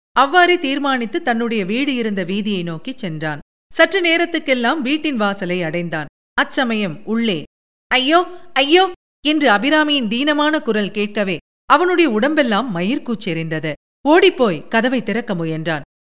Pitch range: 195-285 Hz